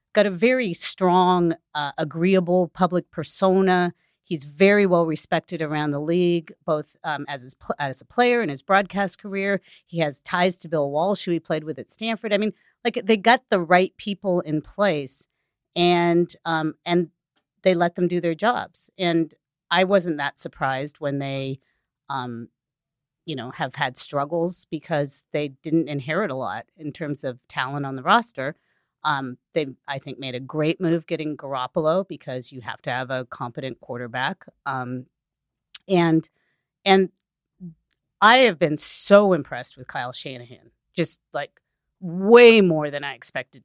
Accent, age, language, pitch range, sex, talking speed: American, 40-59, English, 145-185 Hz, female, 165 wpm